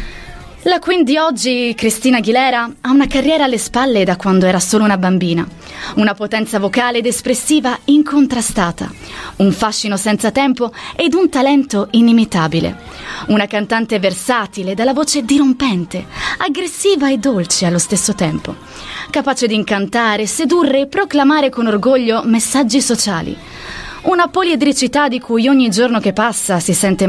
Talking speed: 140 wpm